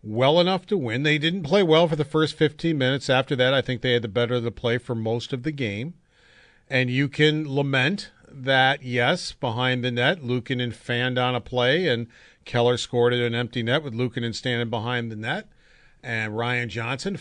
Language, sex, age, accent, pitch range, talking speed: English, male, 40-59, American, 120-140 Hz, 205 wpm